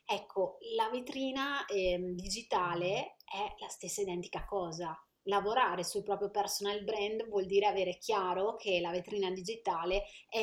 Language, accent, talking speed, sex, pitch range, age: Italian, native, 140 wpm, female, 185-230 Hz, 30-49